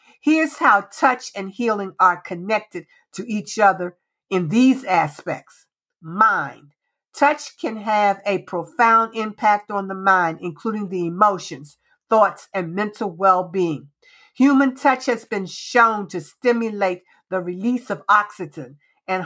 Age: 50-69